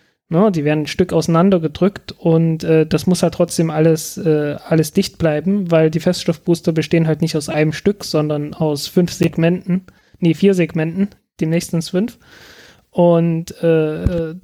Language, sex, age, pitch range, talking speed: German, male, 20-39, 160-190 Hz, 155 wpm